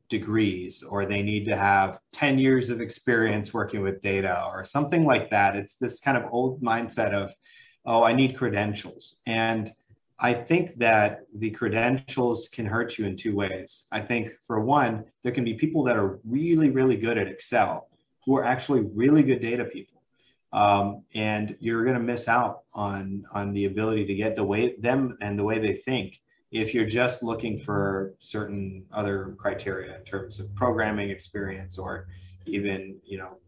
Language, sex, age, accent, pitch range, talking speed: English, male, 30-49, American, 100-120 Hz, 180 wpm